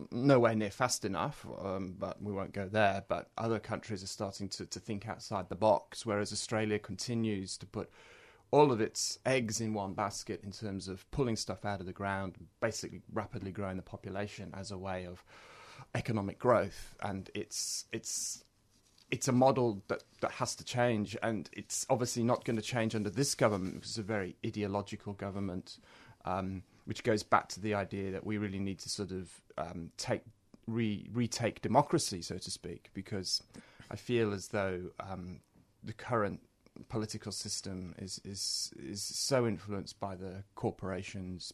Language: English